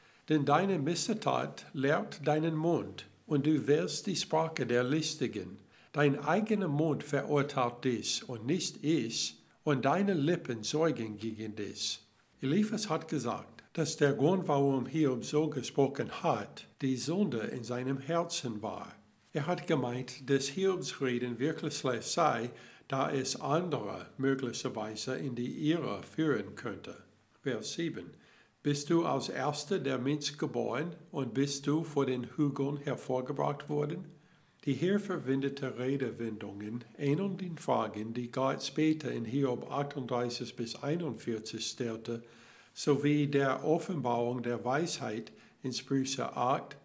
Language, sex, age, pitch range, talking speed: German, male, 60-79, 120-155 Hz, 130 wpm